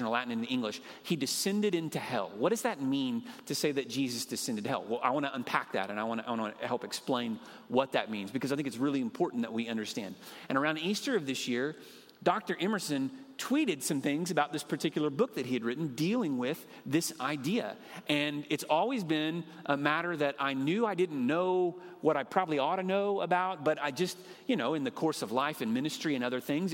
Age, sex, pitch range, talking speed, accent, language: 40-59, male, 135-190 Hz, 225 wpm, American, English